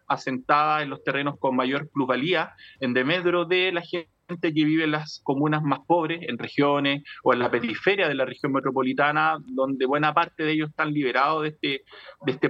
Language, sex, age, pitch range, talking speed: Spanish, male, 30-49, 135-165 Hz, 185 wpm